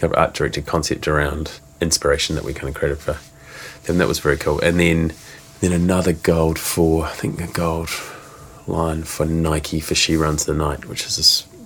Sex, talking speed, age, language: male, 200 wpm, 30-49, English